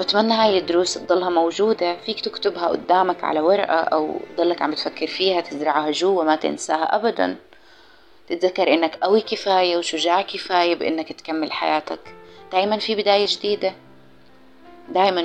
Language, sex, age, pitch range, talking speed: Arabic, female, 20-39, 160-220 Hz, 135 wpm